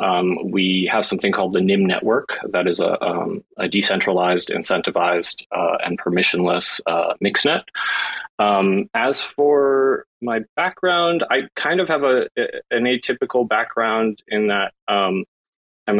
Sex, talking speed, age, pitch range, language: male, 145 wpm, 20-39, 90-125 Hz, English